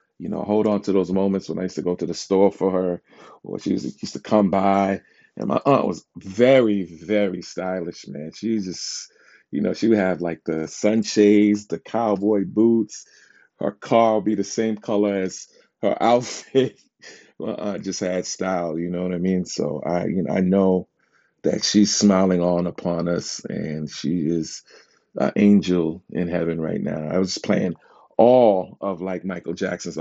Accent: American